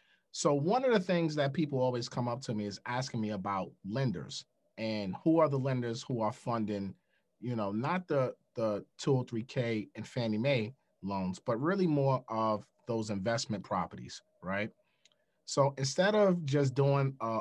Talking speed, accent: 170 wpm, American